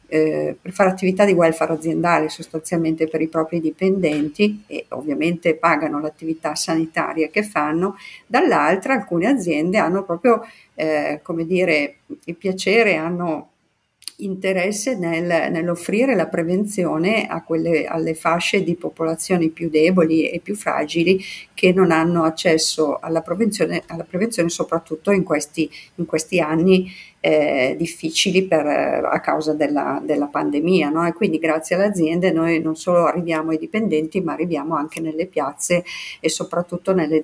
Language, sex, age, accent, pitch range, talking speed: Italian, female, 50-69, native, 155-180 Hz, 125 wpm